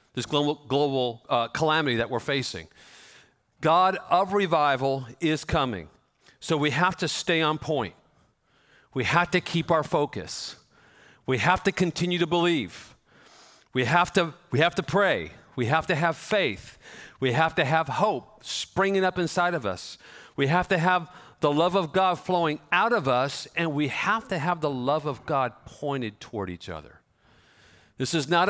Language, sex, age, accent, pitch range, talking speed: English, male, 50-69, American, 130-175 Hz, 165 wpm